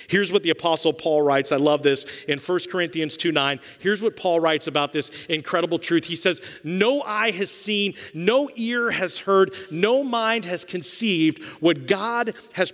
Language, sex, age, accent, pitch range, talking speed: English, male, 40-59, American, 135-185 Hz, 180 wpm